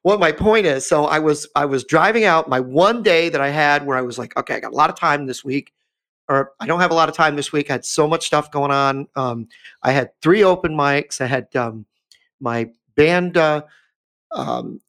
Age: 40-59